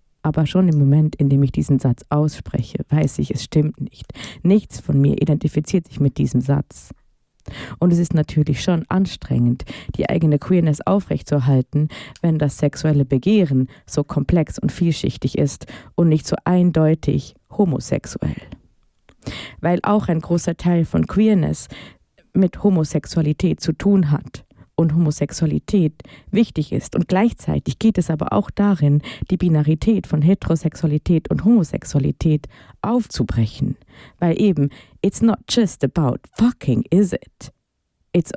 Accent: German